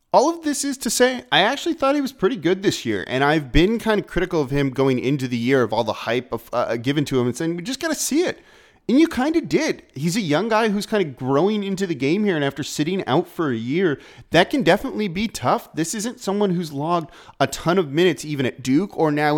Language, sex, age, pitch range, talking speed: English, male, 30-49, 130-200 Hz, 265 wpm